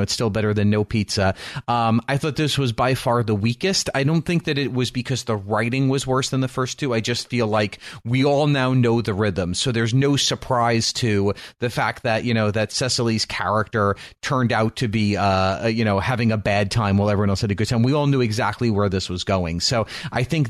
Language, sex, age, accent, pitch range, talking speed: English, male, 30-49, American, 105-125 Hz, 240 wpm